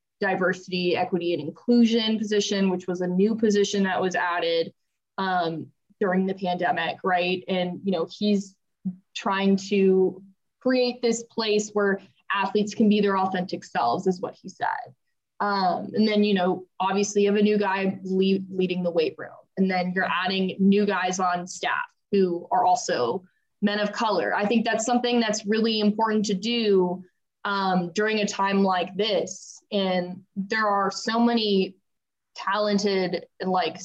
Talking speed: 160 wpm